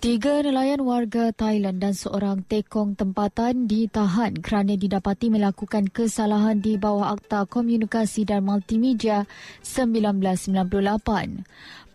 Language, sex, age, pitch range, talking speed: Malay, female, 20-39, 210-240 Hz, 100 wpm